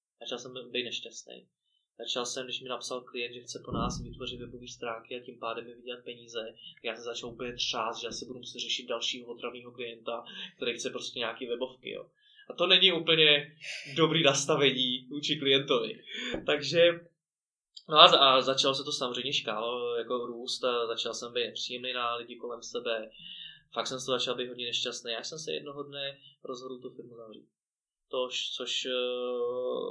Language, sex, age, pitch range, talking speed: Czech, male, 20-39, 120-145 Hz, 175 wpm